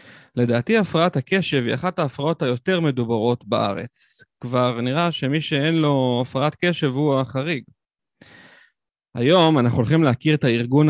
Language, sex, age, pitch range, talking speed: Hebrew, male, 30-49, 120-160 Hz, 130 wpm